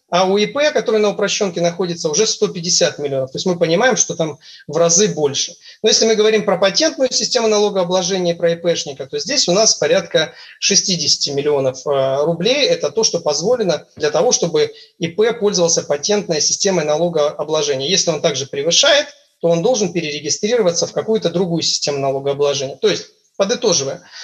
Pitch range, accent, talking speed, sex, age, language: 165-230 Hz, native, 160 wpm, male, 30-49, Russian